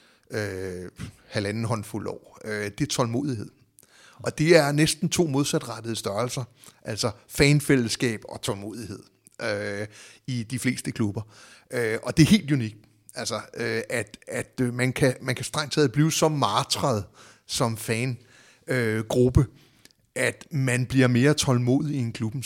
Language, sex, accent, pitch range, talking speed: Danish, male, native, 110-135 Hz, 145 wpm